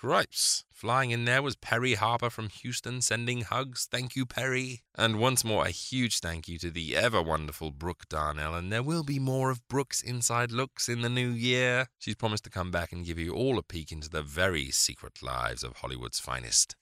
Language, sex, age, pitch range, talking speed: English, male, 30-49, 80-120 Hz, 205 wpm